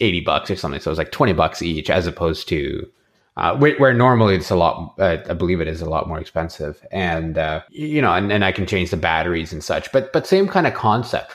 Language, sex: English, male